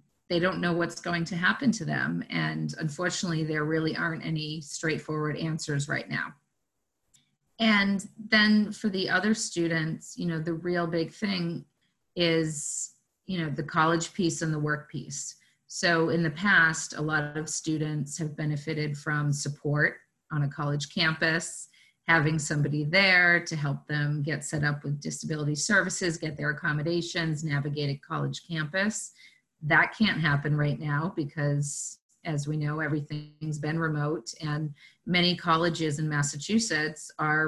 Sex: female